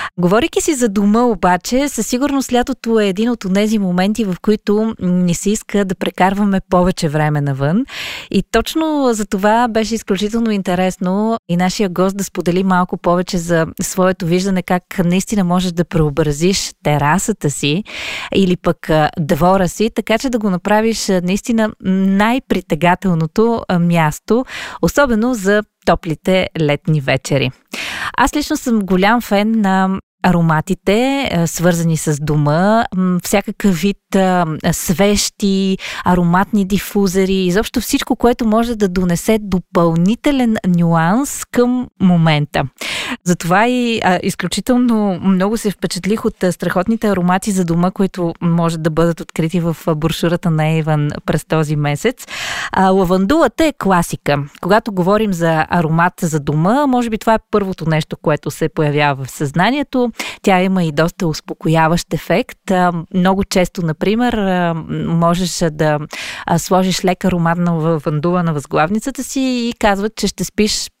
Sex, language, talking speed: female, Bulgarian, 135 wpm